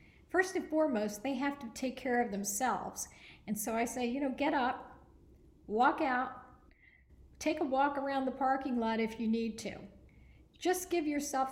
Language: English